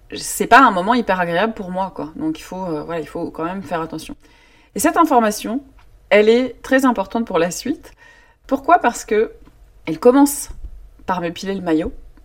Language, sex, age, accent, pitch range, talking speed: French, female, 20-39, French, 175-240 Hz, 190 wpm